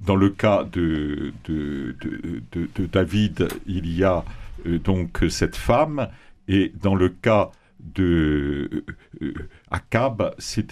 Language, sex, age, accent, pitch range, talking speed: French, male, 60-79, French, 85-110 Hz, 125 wpm